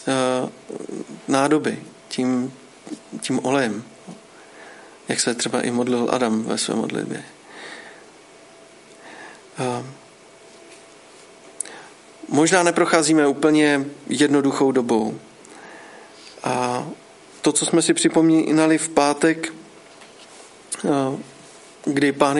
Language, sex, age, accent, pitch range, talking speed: Czech, male, 40-59, native, 135-160 Hz, 75 wpm